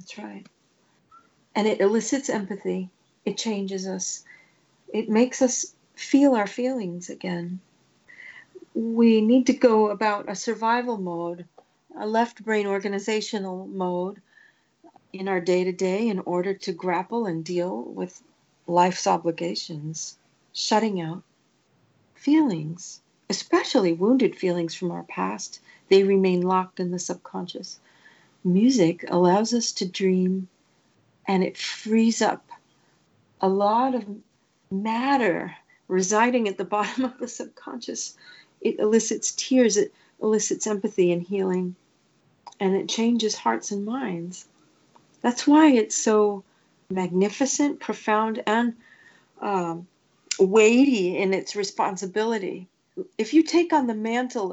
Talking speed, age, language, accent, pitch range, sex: 120 wpm, 40-59, English, American, 185-230 Hz, female